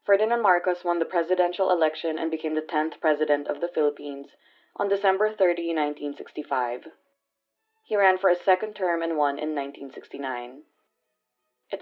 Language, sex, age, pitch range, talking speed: English, female, 20-39, 150-190 Hz, 145 wpm